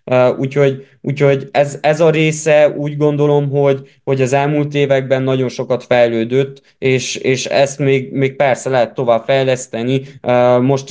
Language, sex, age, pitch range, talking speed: Hungarian, male, 20-39, 125-140 Hz, 145 wpm